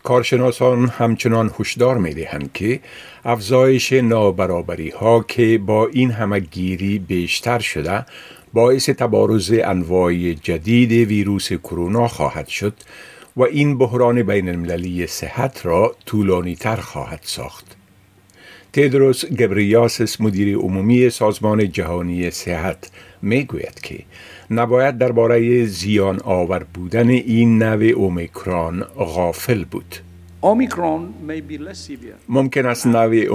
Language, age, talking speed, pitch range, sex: Persian, 50-69, 105 wpm, 90-120 Hz, male